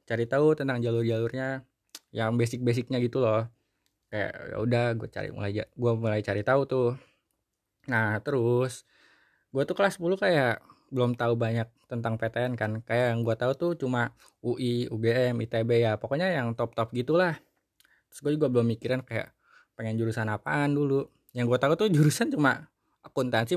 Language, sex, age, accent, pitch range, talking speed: Indonesian, male, 20-39, native, 115-135 Hz, 155 wpm